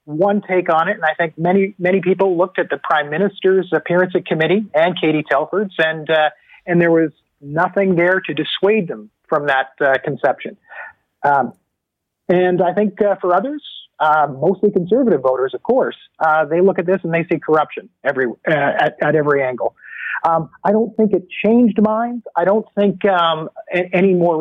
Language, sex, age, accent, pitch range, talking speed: English, male, 40-59, American, 155-190 Hz, 185 wpm